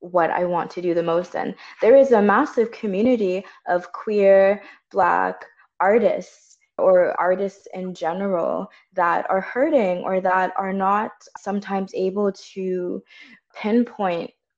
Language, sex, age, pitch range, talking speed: English, female, 20-39, 170-195 Hz, 130 wpm